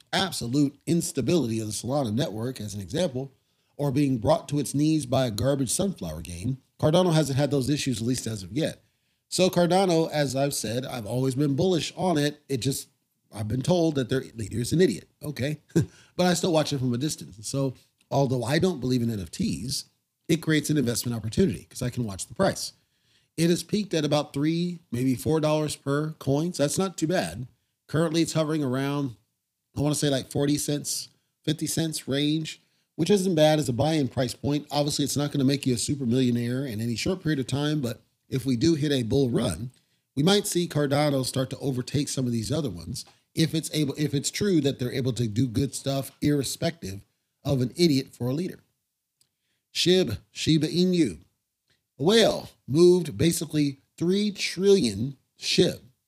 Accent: American